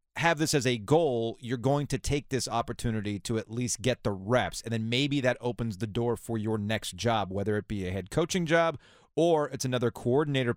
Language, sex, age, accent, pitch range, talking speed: English, male, 30-49, American, 110-155 Hz, 220 wpm